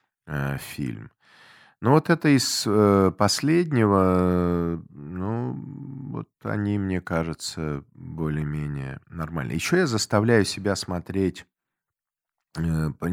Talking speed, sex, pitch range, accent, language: 80 wpm, male, 85-115 Hz, native, Russian